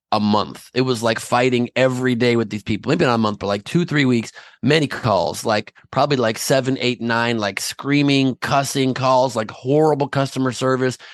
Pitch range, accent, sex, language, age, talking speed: 110-150 Hz, American, male, English, 30-49, 195 wpm